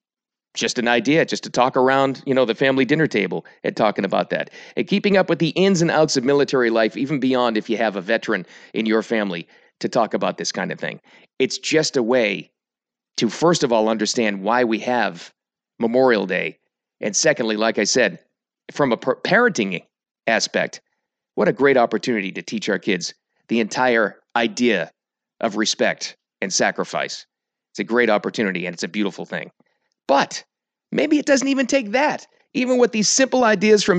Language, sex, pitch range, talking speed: English, male, 125-200 Hz, 185 wpm